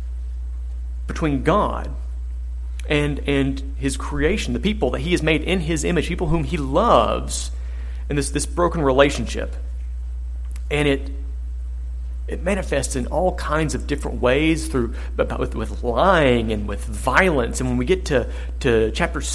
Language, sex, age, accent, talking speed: English, male, 40-59, American, 150 wpm